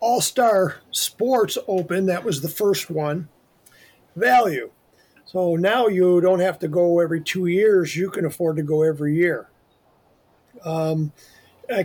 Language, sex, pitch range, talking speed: English, male, 155-190 Hz, 140 wpm